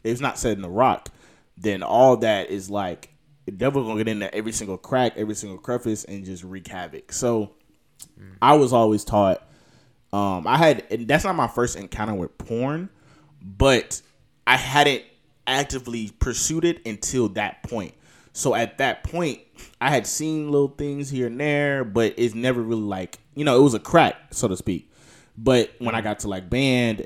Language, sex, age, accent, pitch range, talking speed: English, male, 20-39, American, 95-125 Hz, 190 wpm